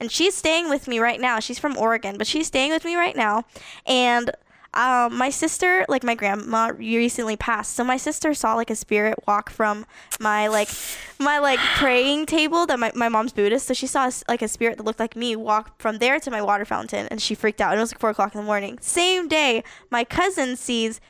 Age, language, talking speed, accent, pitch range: 10-29, English, 230 wpm, American, 220-270 Hz